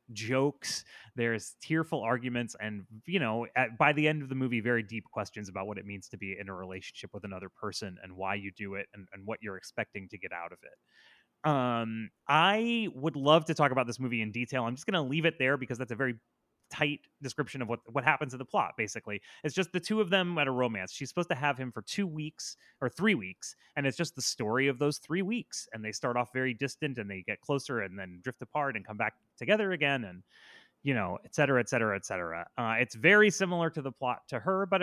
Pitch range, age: 110-155 Hz, 30-49